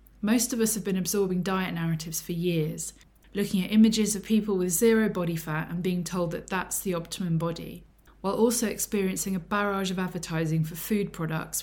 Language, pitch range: English, 165-205 Hz